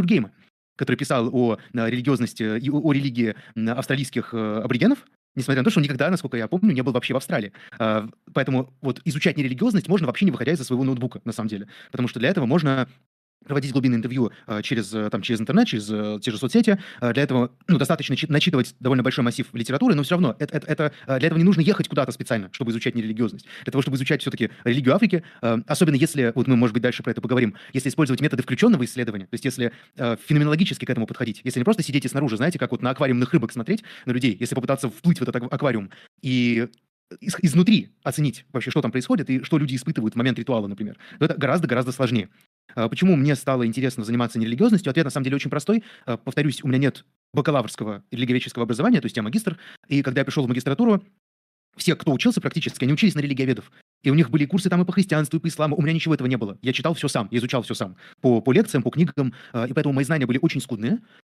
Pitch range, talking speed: 120-160 Hz, 210 wpm